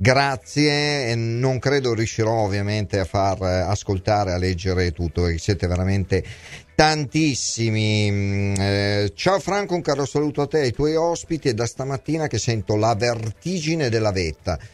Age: 40-59